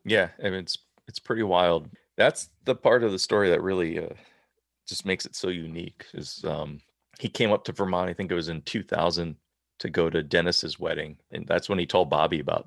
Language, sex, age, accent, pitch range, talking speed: English, male, 30-49, American, 85-110 Hz, 220 wpm